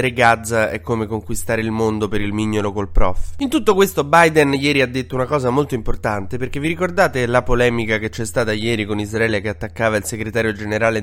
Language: Italian